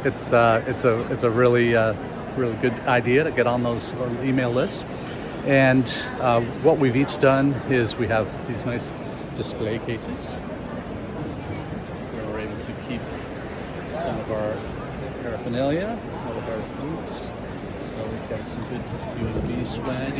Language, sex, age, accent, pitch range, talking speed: English, male, 50-69, American, 115-135 Hz, 150 wpm